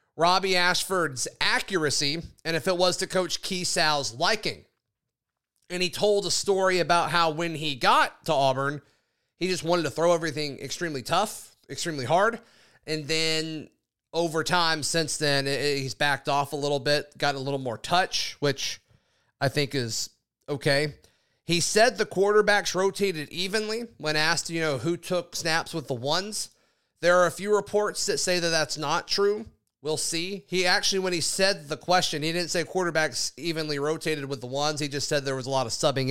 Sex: male